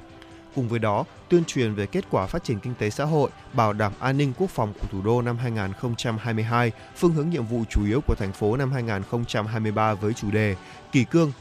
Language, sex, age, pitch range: Vietnamese, male, 20-39, 110-145 Hz